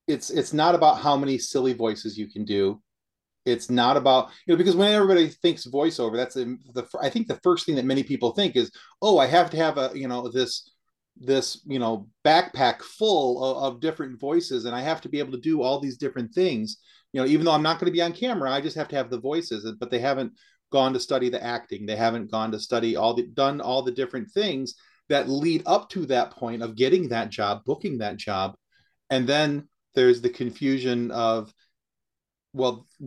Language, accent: English, American